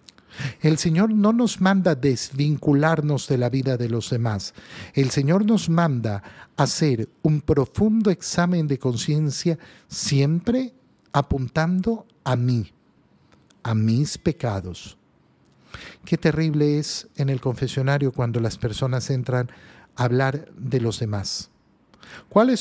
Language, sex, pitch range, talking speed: Spanish, male, 135-210 Hz, 120 wpm